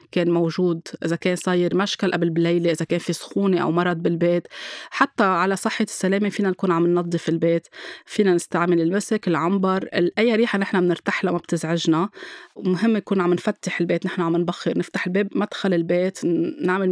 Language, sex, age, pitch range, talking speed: Arabic, female, 20-39, 170-200 Hz, 165 wpm